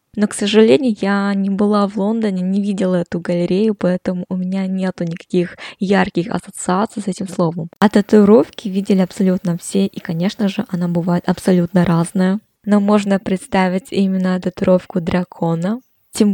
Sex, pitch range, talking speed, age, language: female, 180-205 Hz, 150 wpm, 20-39, Russian